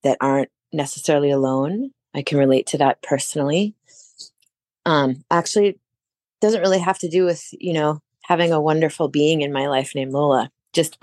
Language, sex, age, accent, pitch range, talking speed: English, female, 20-39, American, 140-165 Hz, 170 wpm